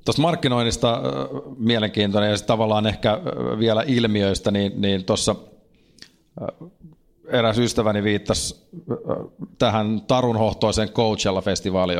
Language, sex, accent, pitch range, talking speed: Finnish, male, native, 95-110 Hz, 85 wpm